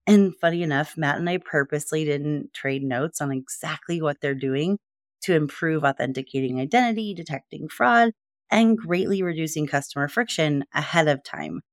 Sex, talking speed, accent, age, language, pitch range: female, 150 wpm, American, 30-49, English, 140-195 Hz